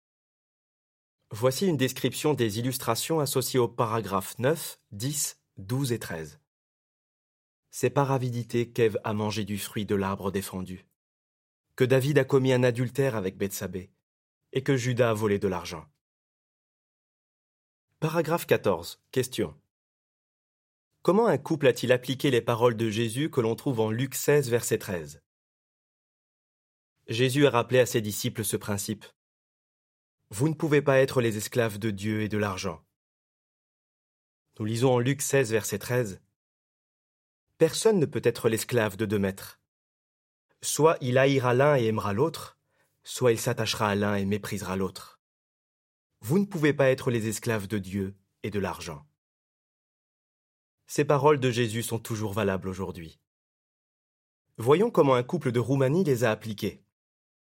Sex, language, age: male, French, 30-49